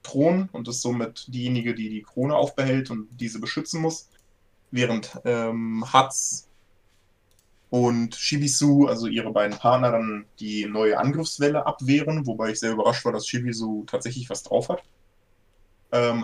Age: 20-39